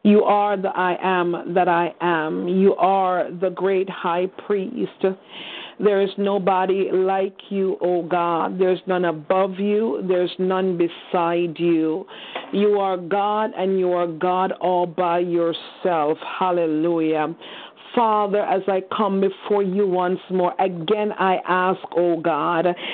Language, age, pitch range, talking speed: English, 40-59, 175-205 Hz, 150 wpm